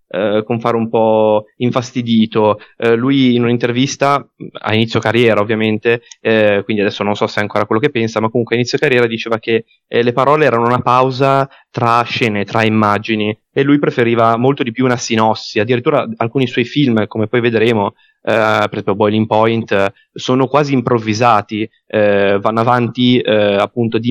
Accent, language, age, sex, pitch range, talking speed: native, Italian, 20-39, male, 110-130 Hz, 160 wpm